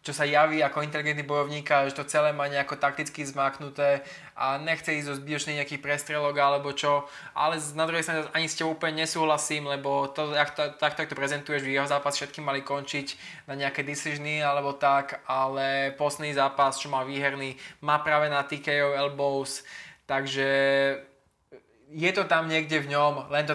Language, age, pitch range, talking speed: Slovak, 20-39, 135-150 Hz, 175 wpm